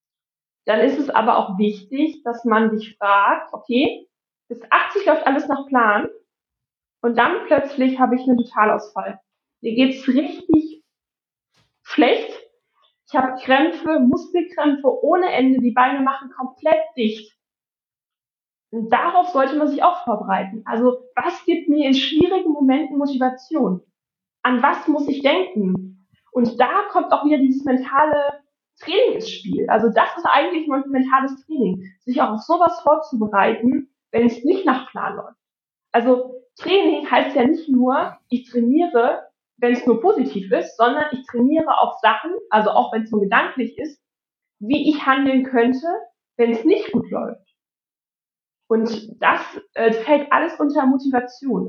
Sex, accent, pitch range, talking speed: female, German, 235-305 Hz, 150 wpm